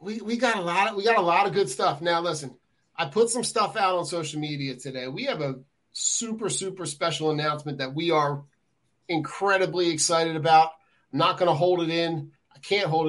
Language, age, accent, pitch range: English, 30-49, American, 150-175 Hz